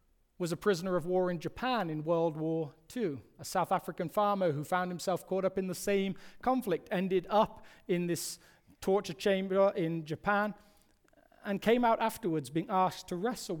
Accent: British